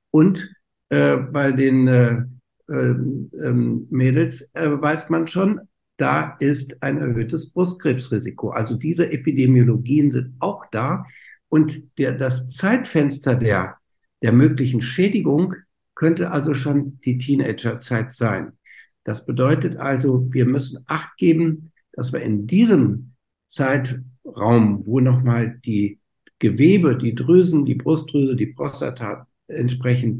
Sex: male